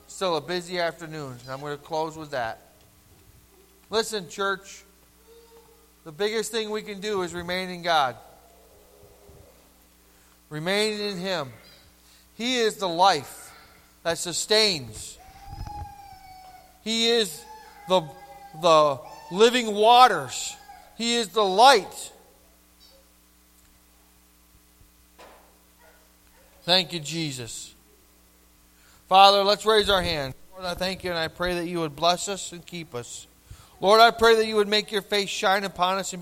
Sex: male